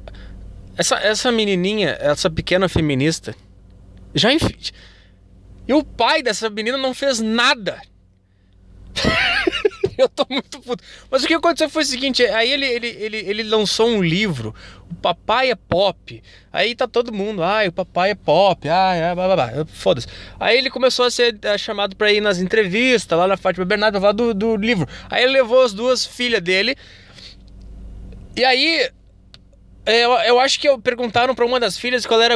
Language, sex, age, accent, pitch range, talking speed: English, male, 20-39, Brazilian, 155-250 Hz, 170 wpm